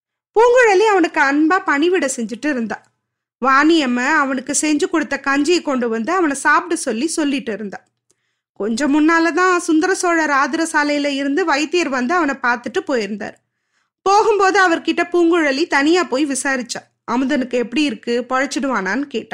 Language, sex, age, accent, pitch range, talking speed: Tamil, female, 20-39, native, 255-355 Hz, 120 wpm